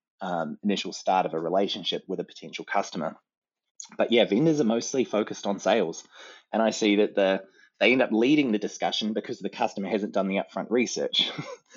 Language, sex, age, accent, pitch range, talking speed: English, male, 20-39, Australian, 95-110 Hz, 190 wpm